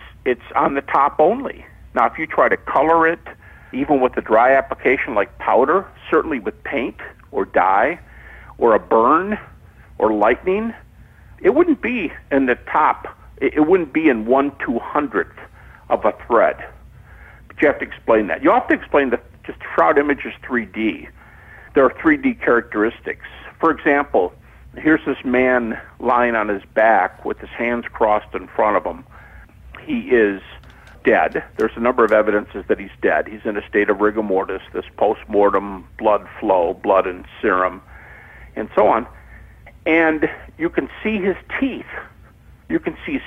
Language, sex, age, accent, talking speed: English, male, 60-79, American, 165 wpm